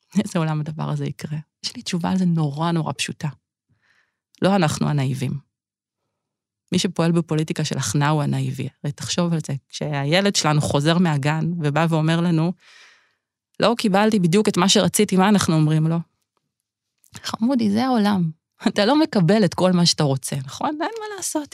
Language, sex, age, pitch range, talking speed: Hebrew, female, 30-49, 155-235 Hz, 165 wpm